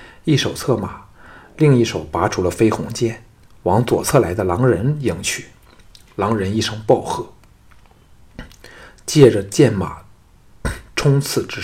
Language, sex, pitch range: Chinese, male, 95-120 Hz